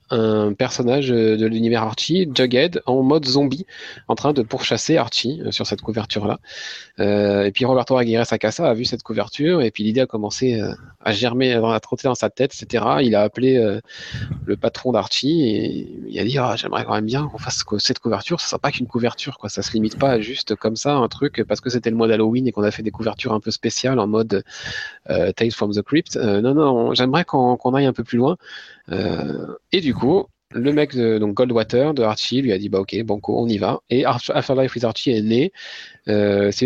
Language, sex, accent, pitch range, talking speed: French, male, French, 110-130 Hz, 235 wpm